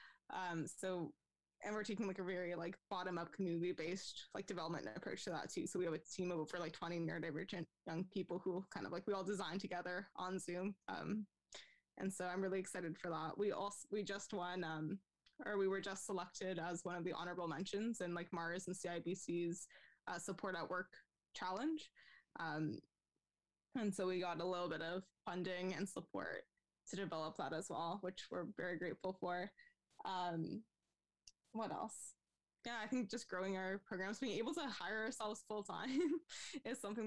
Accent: American